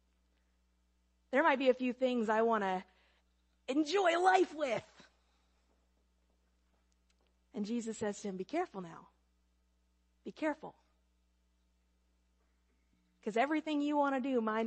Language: English